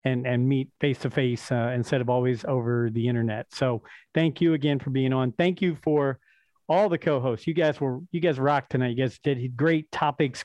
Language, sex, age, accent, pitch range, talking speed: English, male, 40-59, American, 135-165 Hz, 210 wpm